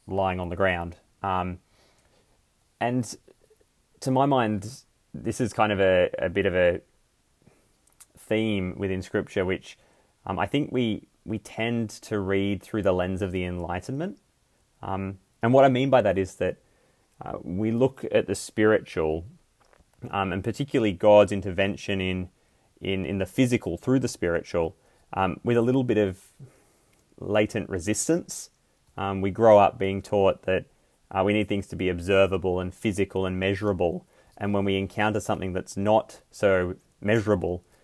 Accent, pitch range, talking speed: Australian, 95-115 Hz, 155 wpm